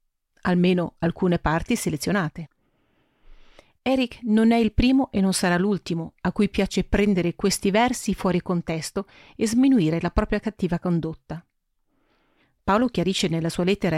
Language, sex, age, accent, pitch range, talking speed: Italian, female, 40-59, native, 170-220 Hz, 135 wpm